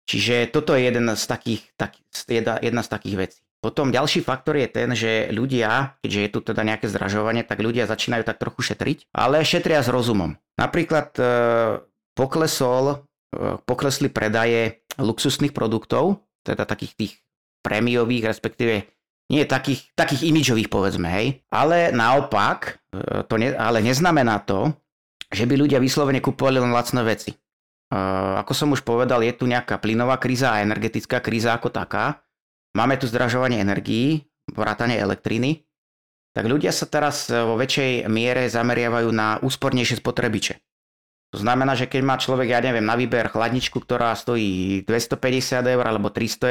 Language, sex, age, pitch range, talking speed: Slovak, male, 30-49, 110-135 Hz, 145 wpm